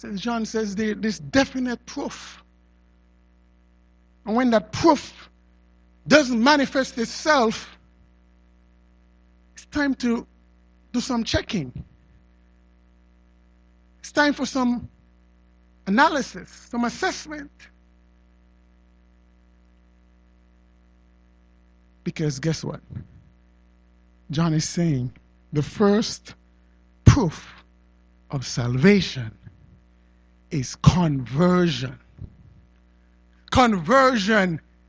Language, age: English, 60-79